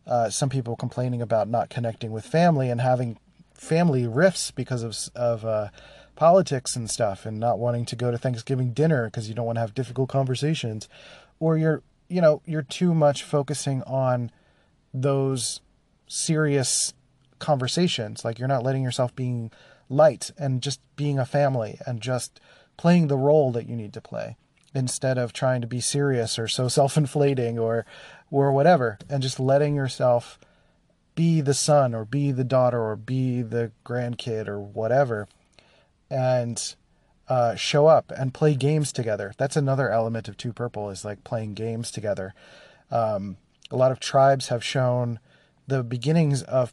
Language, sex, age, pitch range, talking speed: English, male, 30-49, 120-140 Hz, 165 wpm